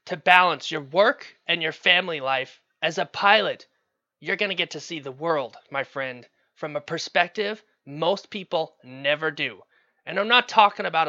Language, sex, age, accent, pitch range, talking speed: English, male, 30-49, American, 165-220 Hz, 180 wpm